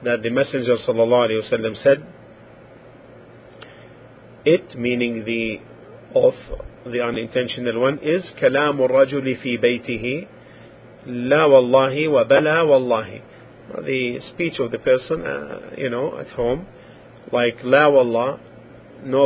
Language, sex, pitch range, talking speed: English, male, 120-145 Hz, 105 wpm